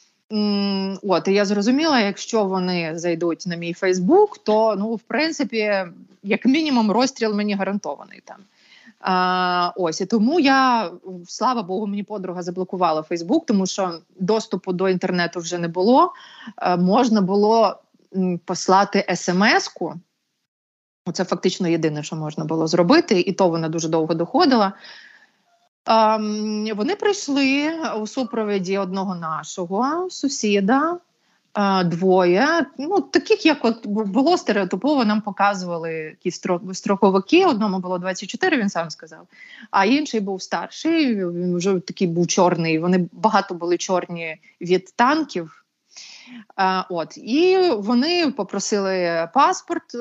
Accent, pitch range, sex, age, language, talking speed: native, 180-240 Hz, female, 30-49, Ukrainian, 120 wpm